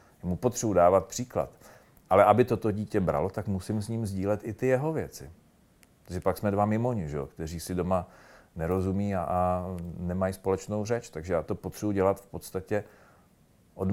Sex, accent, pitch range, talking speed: male, native, 85-100 Hz, 170 wpm